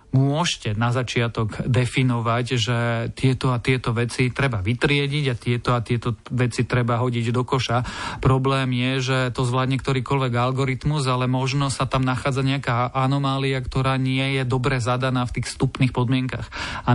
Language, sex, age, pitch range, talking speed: Slovak, male, 40-59, 125-140 Hz, 155 wpm